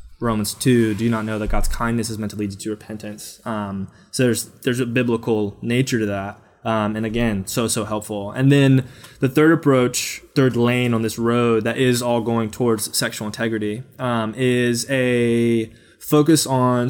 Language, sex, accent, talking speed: English, male, American, 190 wpm